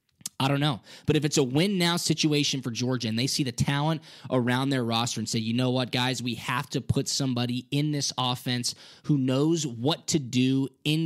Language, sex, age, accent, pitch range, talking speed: English, male, 20-39, American, 120-160 Hz, 215 wpm